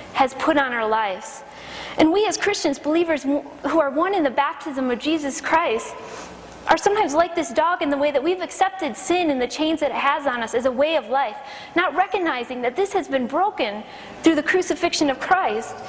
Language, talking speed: English, 210 wpm